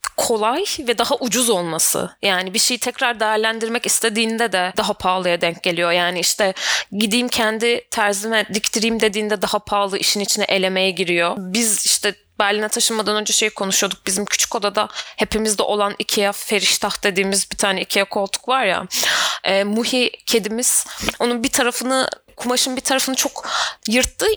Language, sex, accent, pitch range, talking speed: Turkish, female, native, 195-240 Hz, 150 wpm